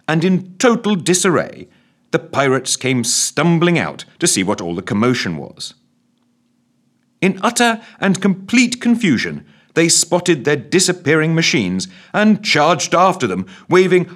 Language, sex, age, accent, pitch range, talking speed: English, male, 40-59, British, 130-200 Hz, 130 wpm